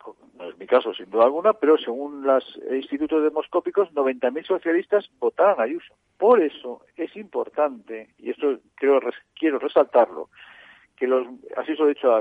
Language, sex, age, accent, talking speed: Spanish, male, 50-69, Spanish, 155 wpm